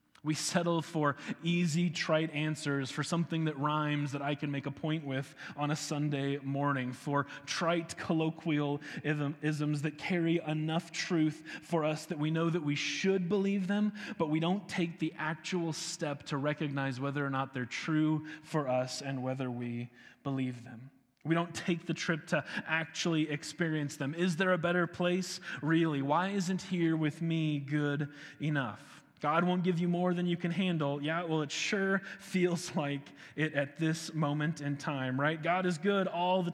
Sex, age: male, 20-39